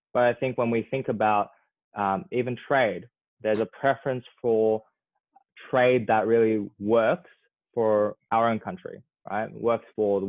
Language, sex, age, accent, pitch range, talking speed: English, male, 20-39, Australian, 105-125 Hz, 150 wpm